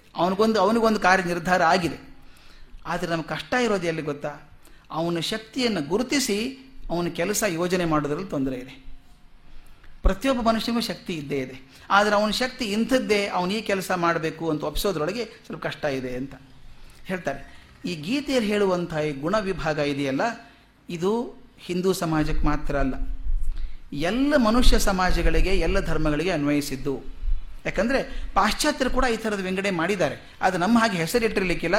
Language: Kannada